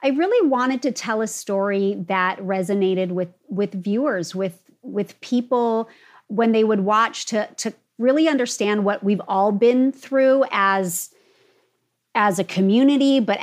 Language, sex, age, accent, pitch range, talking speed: English, female, 30-49, American, 195-245 Hz, 145 wpm